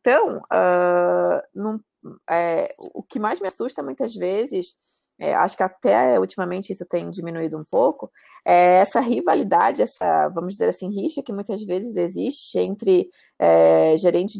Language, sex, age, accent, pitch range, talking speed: Portuguese, female, 20-39, Brazilian, 170-220 Hz, 150 wpm